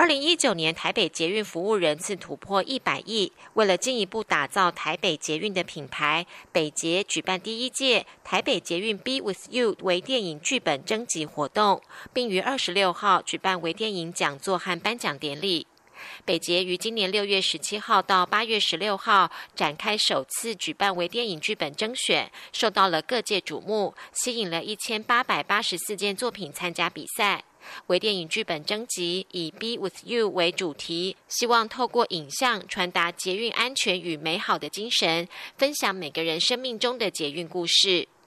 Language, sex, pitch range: German, female, 175-225 Hz